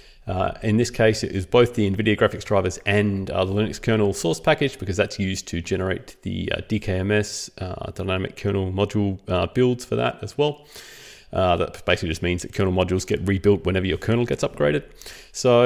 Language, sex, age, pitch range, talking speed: English, male, 30-49, 95-125 Hz, 200 wpm